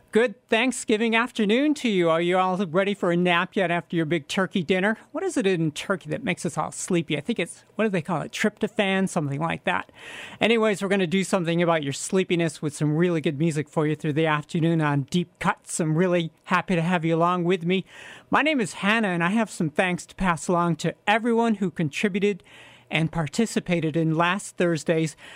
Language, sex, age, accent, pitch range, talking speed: English, male, 40-59, American, 160-190 Hz, 220 wpm